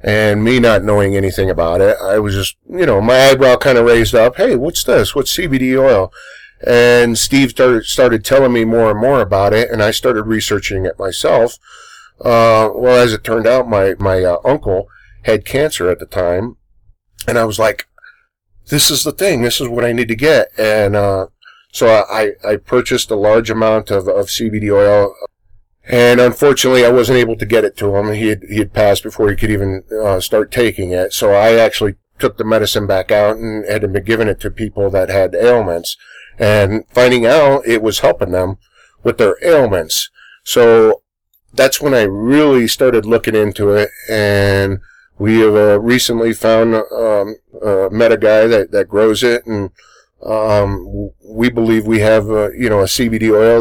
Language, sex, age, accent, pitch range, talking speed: English, male, 40-59, American, 100-120 Hz, 190 wpm